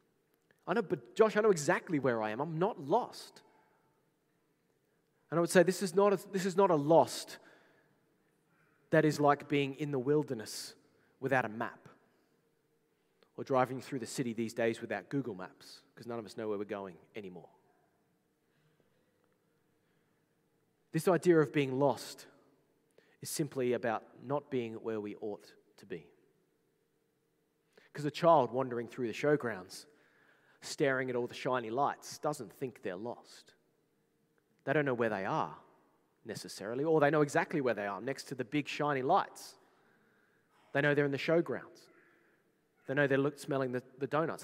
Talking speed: 155 wpm